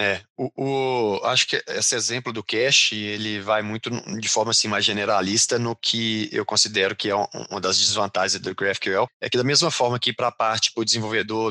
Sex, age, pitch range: male, 20-39, 110-135 Hz